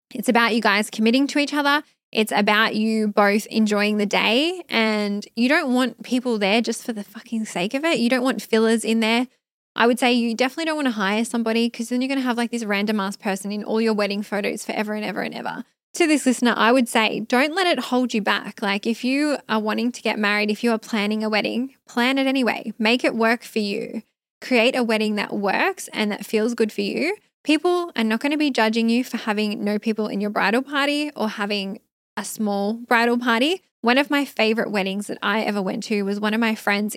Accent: Australian